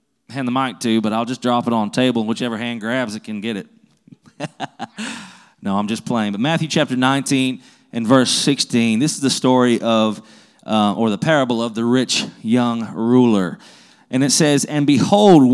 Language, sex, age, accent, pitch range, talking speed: English, male, 30-49, American, 115-155 Hz, 190 wpm